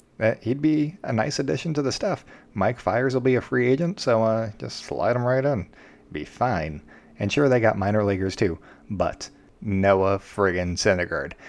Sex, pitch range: male, 95-115 Hz